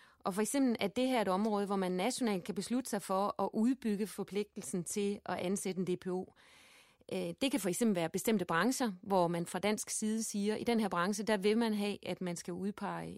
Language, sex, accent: Danish, female, native